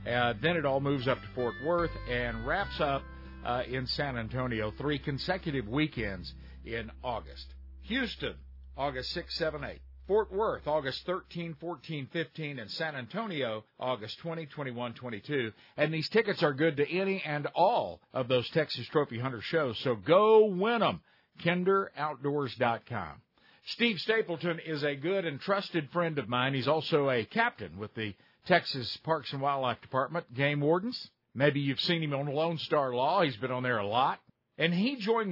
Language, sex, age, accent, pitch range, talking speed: English, male, 50-69, American, 125-165 Hz, 170 wpm